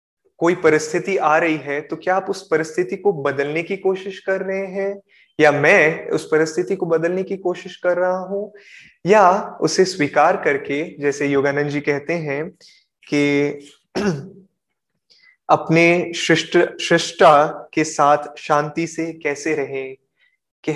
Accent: native